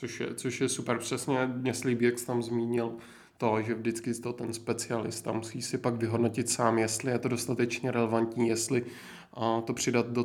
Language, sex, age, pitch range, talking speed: Czech, male, 20-39, 115-130 Hz, 180 wpm